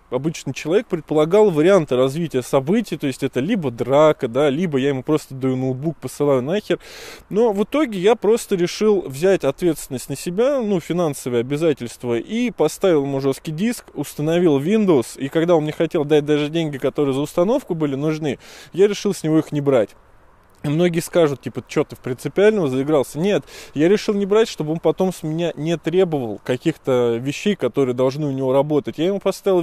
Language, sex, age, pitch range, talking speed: Russian, male, 20-39, 135-180 Hz, 180 wpm